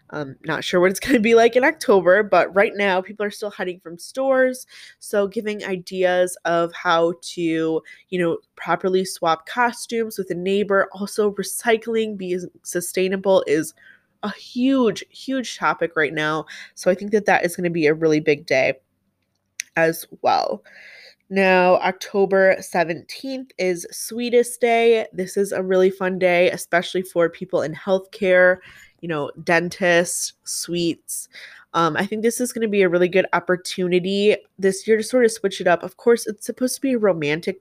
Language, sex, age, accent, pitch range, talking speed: English, female, 20-39, American, 175-215 Hz, 175 wpm